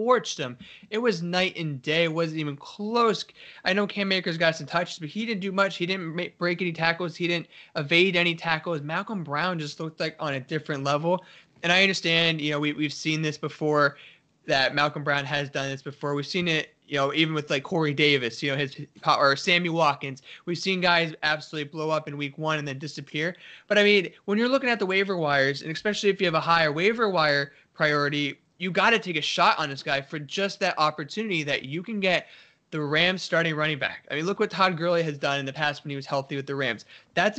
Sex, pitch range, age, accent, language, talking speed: male, 150-185 Hz, 20-39, American, English, 240 wpm